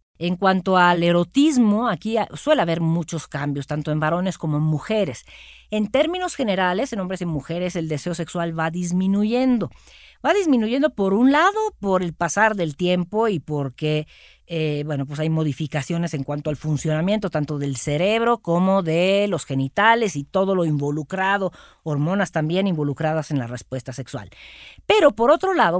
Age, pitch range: 40-59, 155-210 Hz